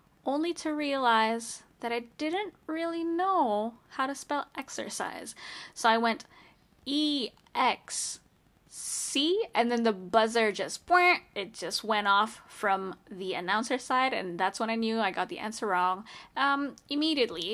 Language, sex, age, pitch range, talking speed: English, female, 10-29, 200-265 Hz, 135 wpm